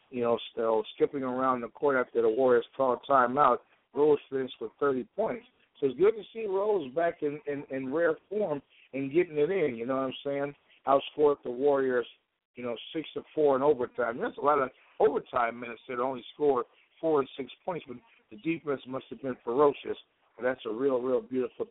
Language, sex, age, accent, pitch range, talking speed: English, male, 60-79, American, 120-145 Hz, 205 wpm